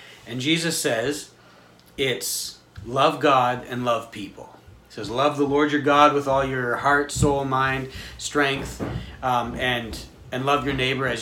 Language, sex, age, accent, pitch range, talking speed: English, male, 40-59, American, 125-155 Hz, 160 wpm